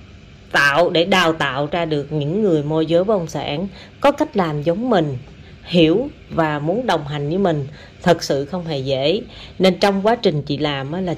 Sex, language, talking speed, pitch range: female, Vietnamese, 195 wpm, 150-200 Hz